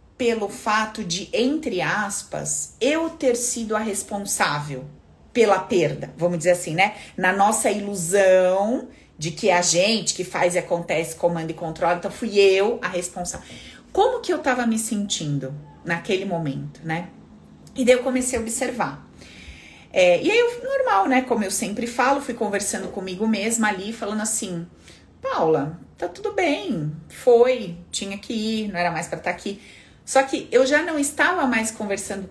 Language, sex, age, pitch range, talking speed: Portuguese, female, 30-49, 170-255 Hz, 160 wpm